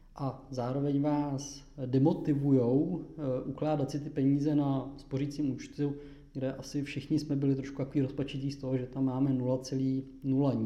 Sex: male